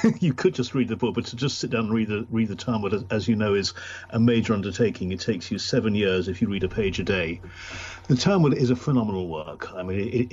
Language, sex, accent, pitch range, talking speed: English, male, British, 95-120 Hz, 275 wpm